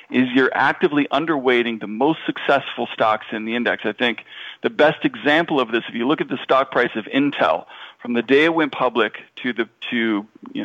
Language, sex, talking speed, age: English, male, 210 wpm, 40-59